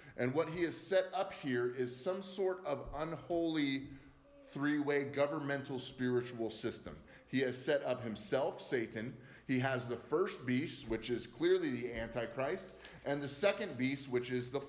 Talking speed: 160 wpm